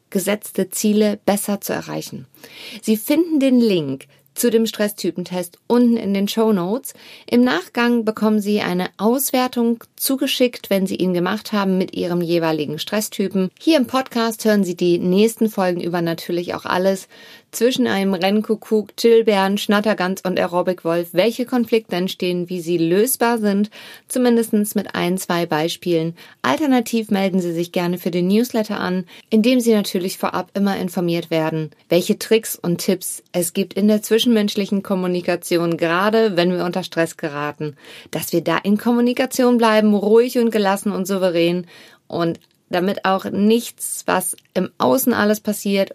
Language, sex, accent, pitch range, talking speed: German, female, German, 180-225 Hz, 155 wpm